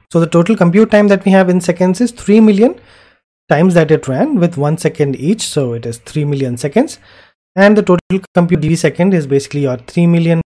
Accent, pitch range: Indian, 135-175 Hz